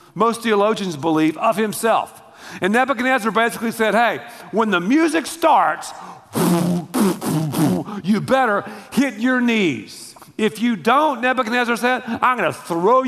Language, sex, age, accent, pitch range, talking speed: English, male, 50-69, American, 165-230 Hz, 130 wpm